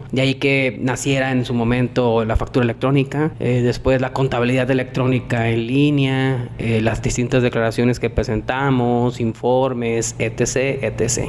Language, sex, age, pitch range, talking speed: Spanish, male, 30-49, 120-140 Hz, 145 wpm